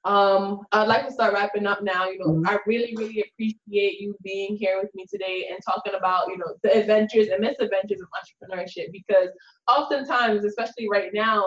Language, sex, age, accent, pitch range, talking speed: English, female, 10-29, American, 200-230 Hz, 190 wpm